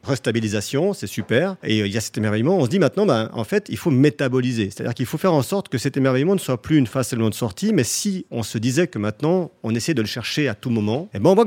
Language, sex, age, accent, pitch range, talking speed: French, male, 40-59, French, 110-155 Hz, 285 wpm